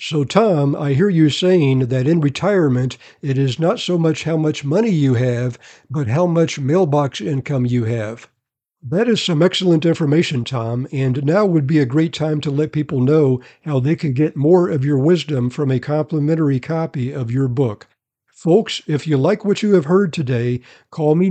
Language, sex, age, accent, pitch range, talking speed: English, male, 60-79, American, 135-170 Hz, 195 wpm